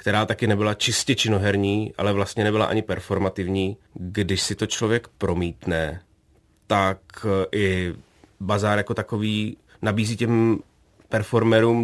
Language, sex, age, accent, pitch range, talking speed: Czech, male, 30-49, native, 100-115 Hz, 115 wpm